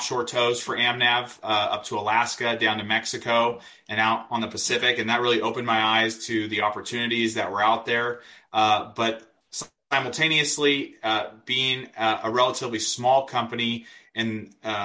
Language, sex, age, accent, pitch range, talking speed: English, male, 30-49, American, 110-120 Hz, 165 wpm